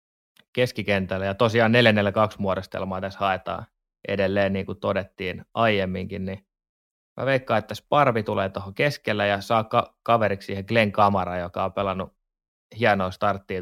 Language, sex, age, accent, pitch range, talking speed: Finnish, male, 20-39, native, 95-115 Hz, 145 wpm